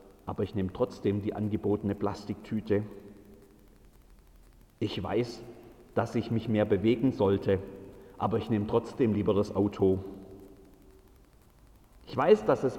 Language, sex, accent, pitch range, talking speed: German, male, German, 100-140 Hz, 120 wpm